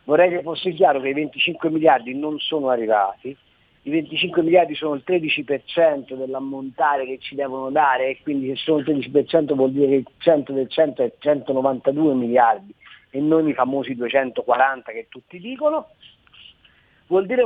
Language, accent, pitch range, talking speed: Italian, native, 135-200 Hz, 160 wpm